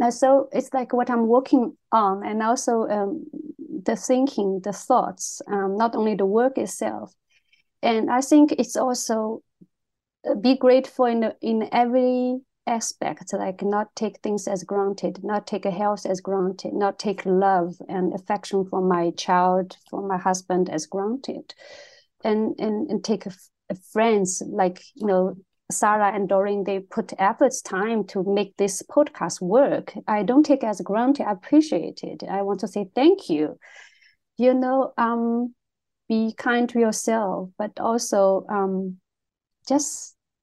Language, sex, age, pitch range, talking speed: English, female, 30-49, 195-250 Hz, 155 wpm